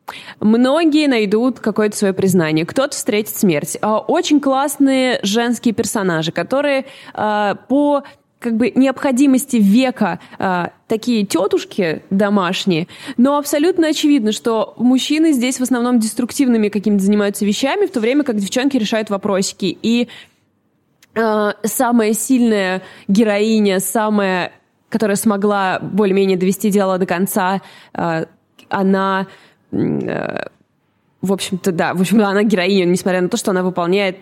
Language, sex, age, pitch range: Russian, female, 20-39, 195-255 Hz